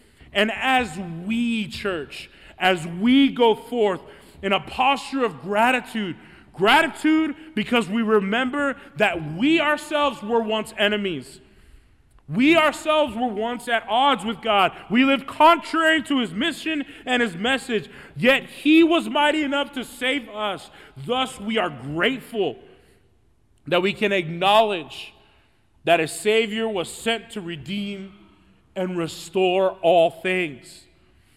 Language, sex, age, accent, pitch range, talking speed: English, male, 30-49, American, 190-245 Hz, 130 wpm